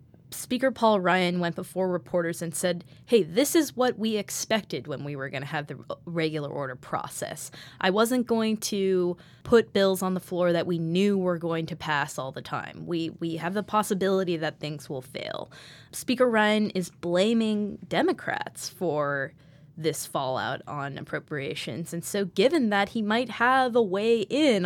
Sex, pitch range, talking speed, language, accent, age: female, 155-205 Hz, 175 wpm, English, American, 20-39